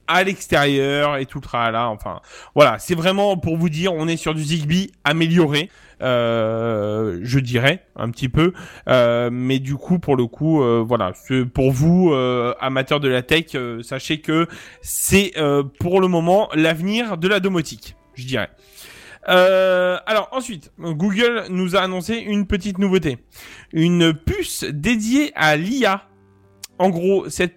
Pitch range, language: 140-200 Hz, French